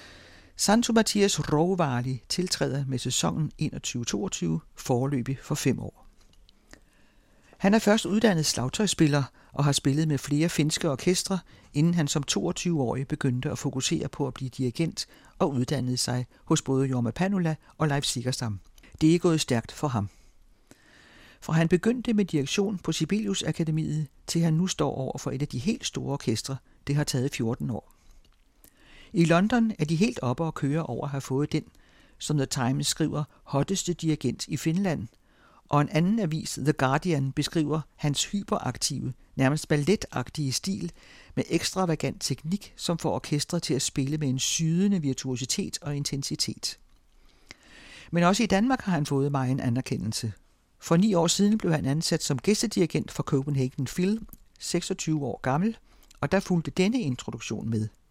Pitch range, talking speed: 130-175 Hz, 160 wpm